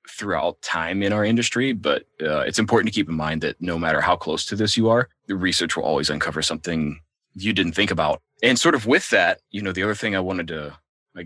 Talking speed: 245 wpm